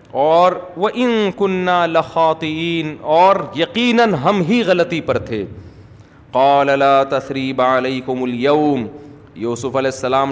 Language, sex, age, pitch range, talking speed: Urdu, male, 40-59, 130-175 Hz, 120 wpm